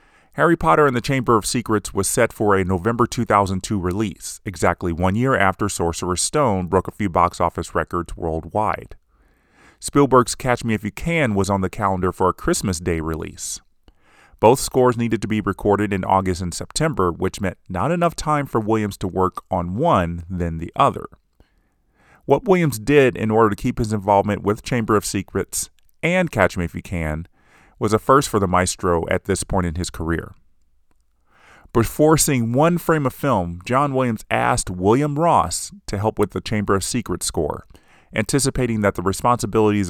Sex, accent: male, American